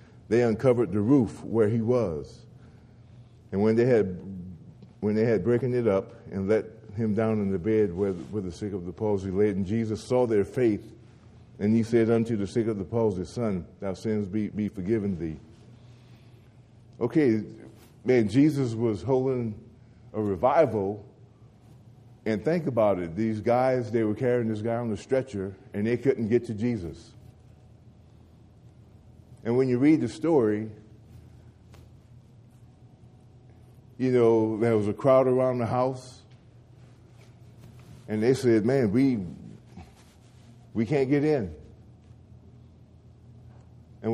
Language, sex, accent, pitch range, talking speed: English, male, American, 110-125 Hz, 145 wpm